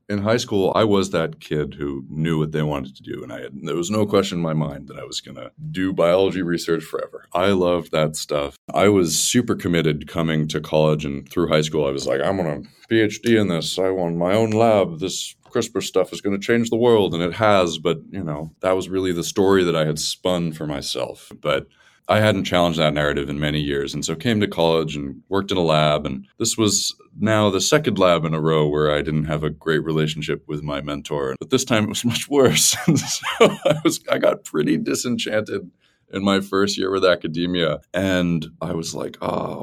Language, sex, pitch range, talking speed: English, male, 75-95 Hz, 230 wpm